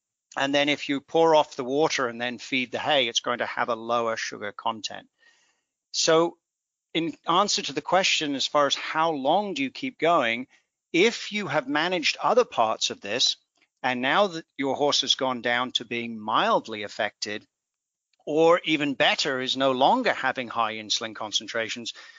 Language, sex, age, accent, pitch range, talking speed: English, male, 50-69, British, 120-155 Hz, 180 wpm